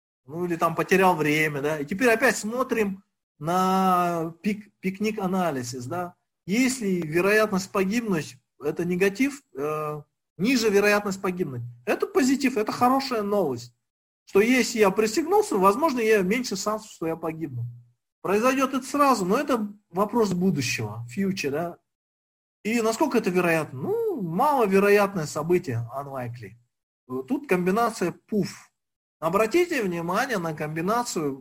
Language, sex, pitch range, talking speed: Russian, male, 155-220 Hz, 125 wpm